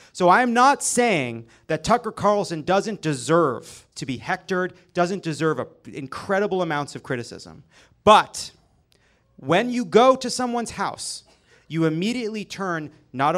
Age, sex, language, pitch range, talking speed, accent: 30-49, male, English, 160-225 Hz, 130 wpm, American